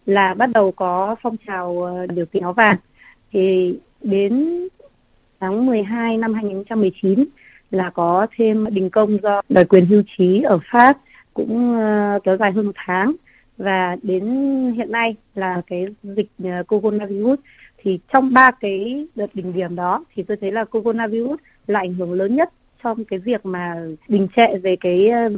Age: 20-39